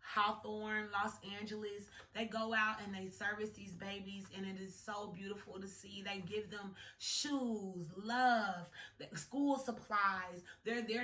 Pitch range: 180-230 Hz